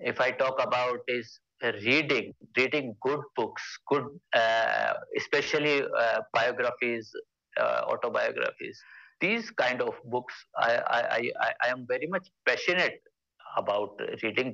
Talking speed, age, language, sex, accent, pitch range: 125 wpm, 60-79, English, male, Indian, 125-200 Hz